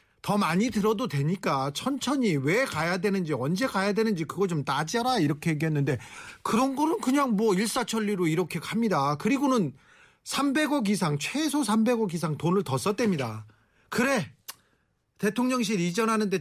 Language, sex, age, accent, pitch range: Korean, male, 40-59, native, 160-240 Hz